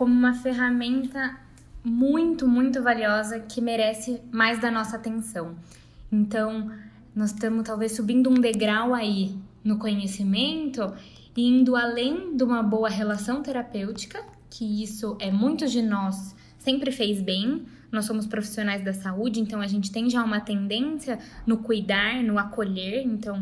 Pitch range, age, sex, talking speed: 210-255 Hz, 10-29, female, 145 wpm